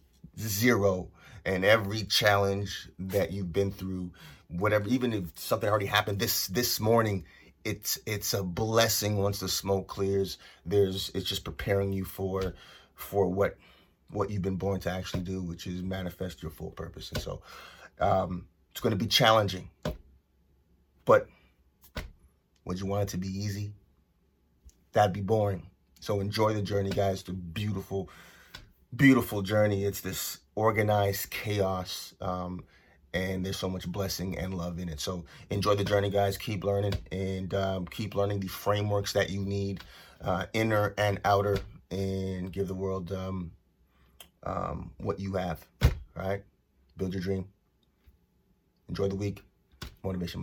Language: English